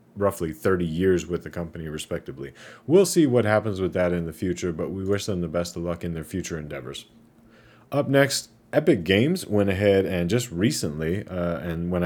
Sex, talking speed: male, 200 wpm